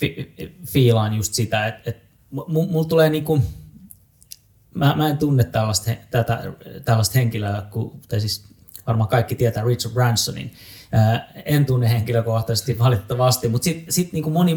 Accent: native